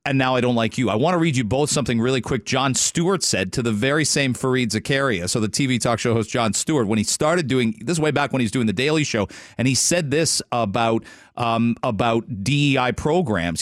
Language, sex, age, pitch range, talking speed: English, male, 40-59, 115-145 Hz, 240 wpm